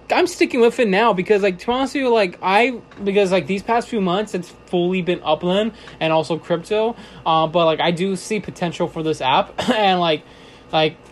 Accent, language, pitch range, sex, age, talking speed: American, English, 155-190 Hz, male, 20-39, 210 wpm